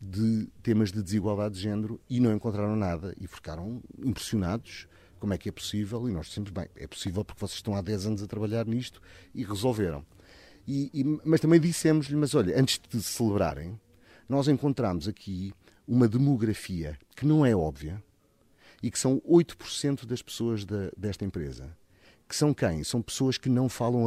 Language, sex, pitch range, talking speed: Portuguese, male, 100-130 Hz, 170 wpm